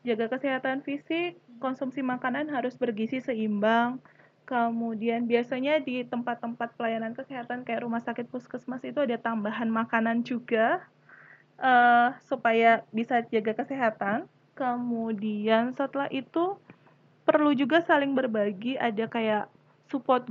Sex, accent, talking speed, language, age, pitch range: female, native, 110 wpm, Indonesian, 20-39, 230-270 Hz